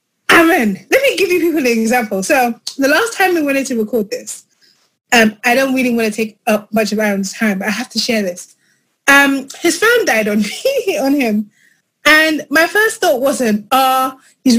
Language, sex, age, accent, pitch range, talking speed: English, female, 20-39, British, 215-290 Hz, 210 wpm